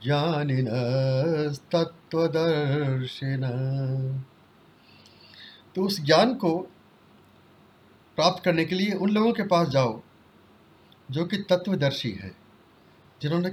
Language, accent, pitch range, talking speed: Hindi, native, 135-180 Hz, 90 wpm